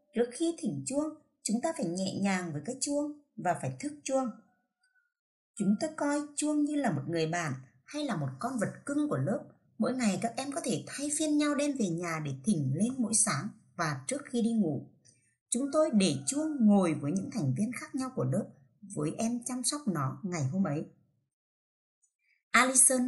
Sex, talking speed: female, 200 wpm